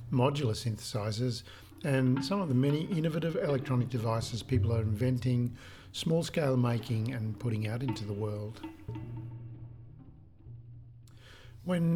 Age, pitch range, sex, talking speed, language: 50-69, 115-135 Hz, male, 115 wpm, English